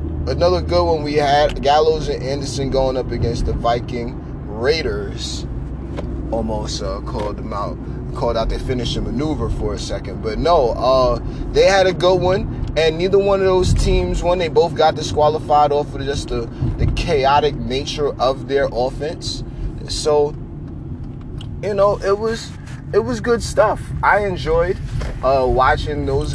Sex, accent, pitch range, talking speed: male, American, 120-150 Hz, 160 wpm